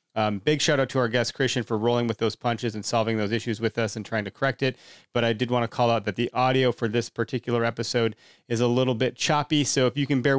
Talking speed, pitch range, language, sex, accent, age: 275 wpm, 105-130 Hz, English, male, American, 30-49